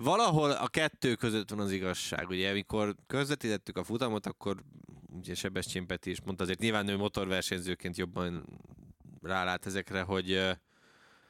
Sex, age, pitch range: male, 20-39, 95-115 Hz